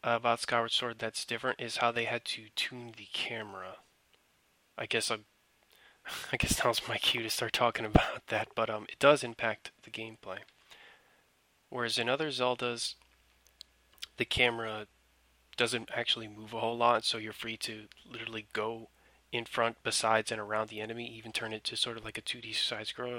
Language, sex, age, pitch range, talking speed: English, male, 20-39, 105-120 Hz, 185 wpm